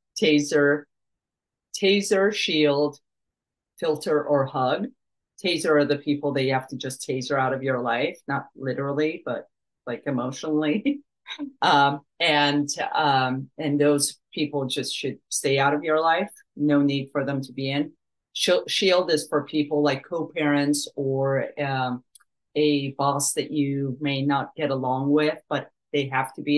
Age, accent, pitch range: 40-59, American, 135-155 Hz